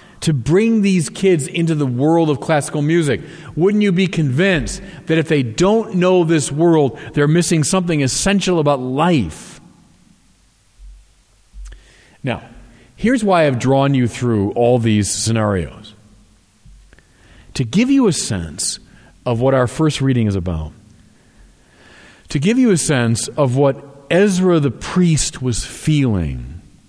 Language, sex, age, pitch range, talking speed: English, male, 40-59, 105-170 Hz, 135 wpm